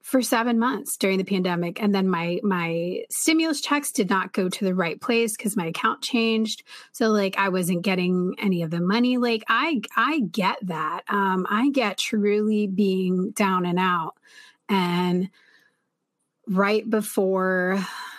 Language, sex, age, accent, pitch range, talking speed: English, female, 30-49, American, 190-245 Hz, 160 wpm